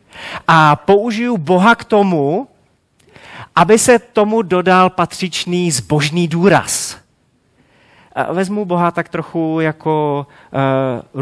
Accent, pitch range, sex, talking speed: native, 120-165 Hz, male, 95 wpm